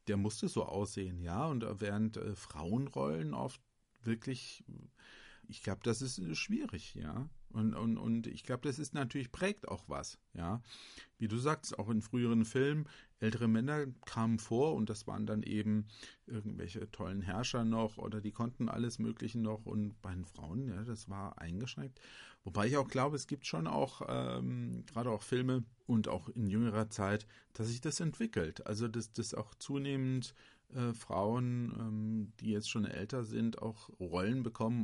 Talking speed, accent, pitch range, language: 170 wpm, German, 105-120 Hz, German